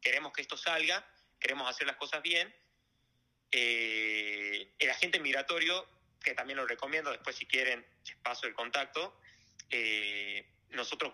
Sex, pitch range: male, 120-175 Hz